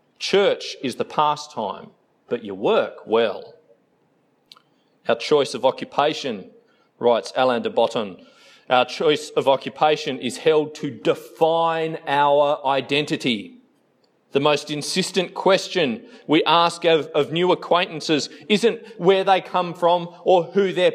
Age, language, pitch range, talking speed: 30-49, English, 135-185 Hz, 125 wpm